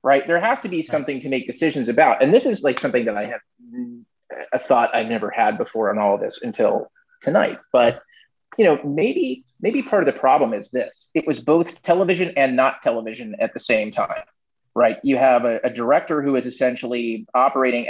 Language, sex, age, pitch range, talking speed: English, male, 30-49, 120-190 Hz, 210 wpm